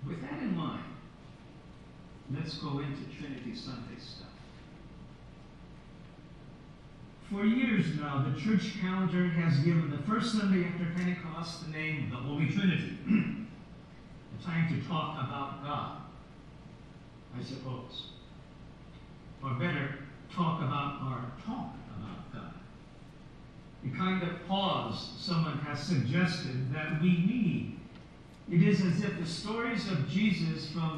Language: English